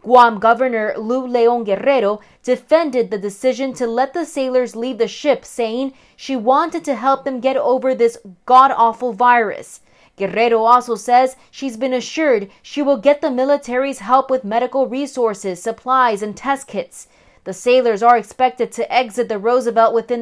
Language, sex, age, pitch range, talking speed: English, female, 20-39, 230-265 Hz, 160 wpm